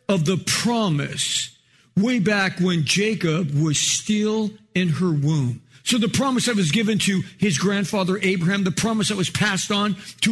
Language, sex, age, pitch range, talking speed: English, male, 50-69, 145-195 Hz, 170 wpm